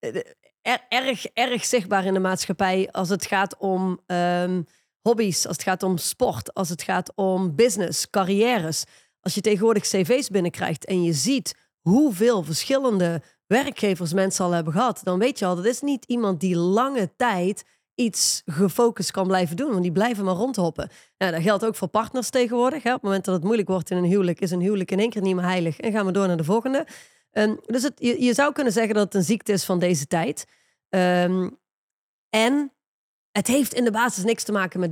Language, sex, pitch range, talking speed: Dutch, female, 185-235 Hz, 205 wpm